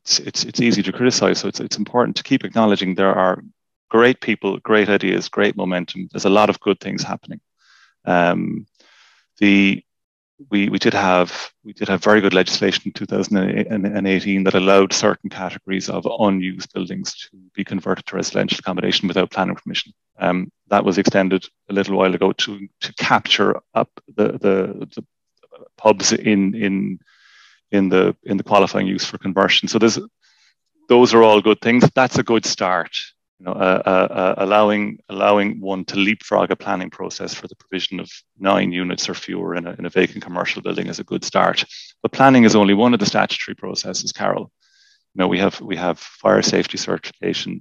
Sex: male